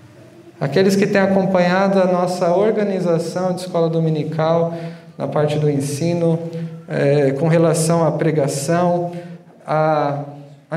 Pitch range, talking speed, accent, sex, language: 150-195 Hz, 105 wpm, Brazilian, male, Portuguese